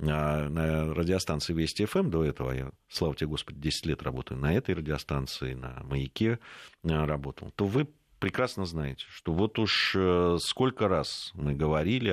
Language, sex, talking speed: Russian, male, 145 wpm